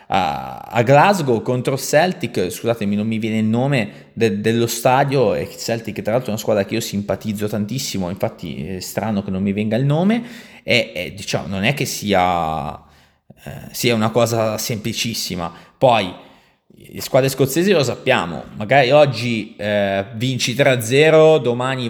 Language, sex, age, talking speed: Italian, male, 20-39, 155 wpm